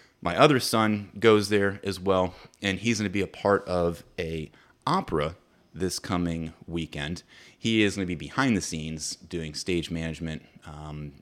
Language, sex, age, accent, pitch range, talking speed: English, male, 30-49, American, 80-110 Hz, 160 wpm